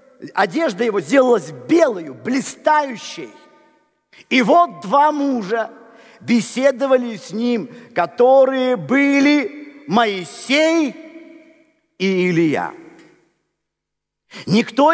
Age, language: 50-69, Russian